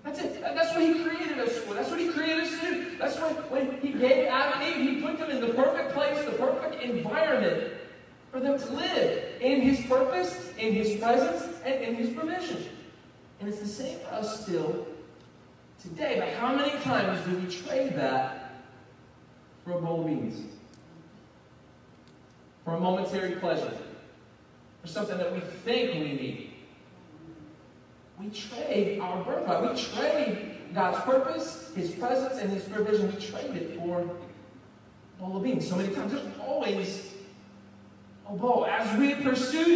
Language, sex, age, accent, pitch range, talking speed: English, male, 40-59, American, 180-275 Hz, 155 wpm